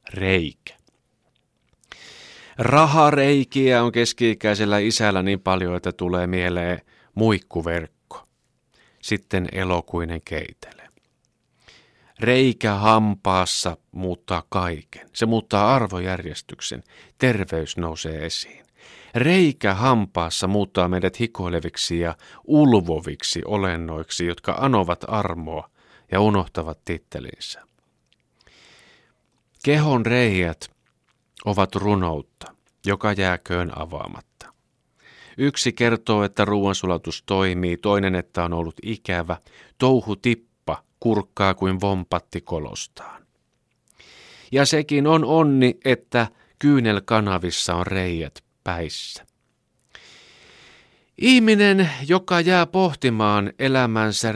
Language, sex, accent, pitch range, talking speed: Finnish, male, native, 90-120 Hz, 85 wpm